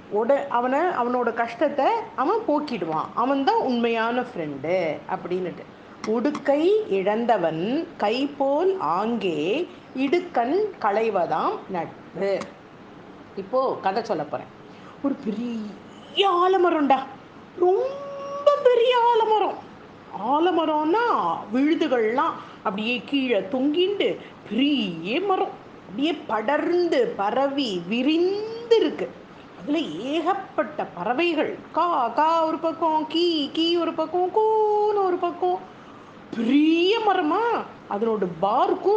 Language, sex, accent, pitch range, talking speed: Tamil, female, native, 230-360 Hz, 90 wpm